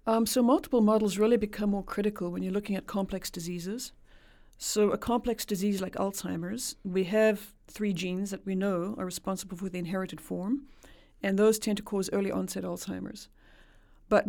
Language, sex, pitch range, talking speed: English, female, 175-210 Hz, 175 wpm